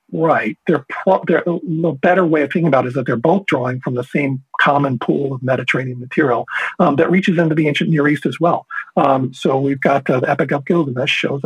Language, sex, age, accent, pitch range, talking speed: English, male, 50-69, American, 135-175 Hz, 230 wpm